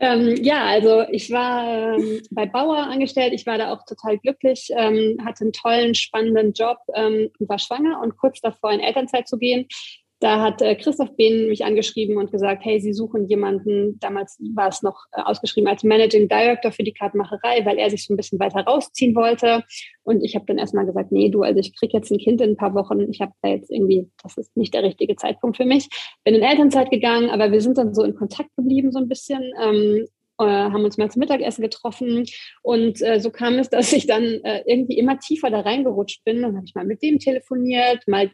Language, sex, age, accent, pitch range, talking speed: German, female, 20-39, German, 215-255 Hz, 220 wpm